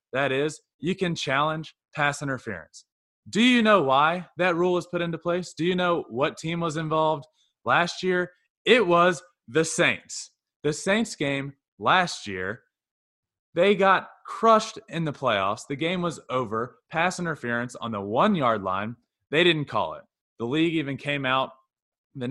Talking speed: 165 wpm